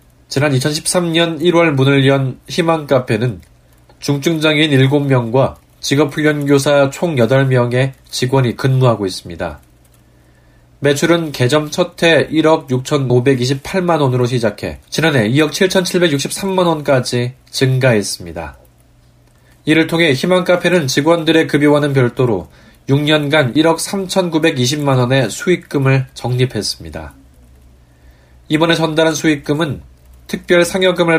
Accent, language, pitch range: native, Korean, 115-160 Hz